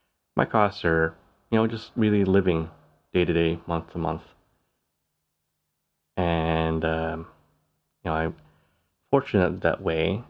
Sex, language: male, English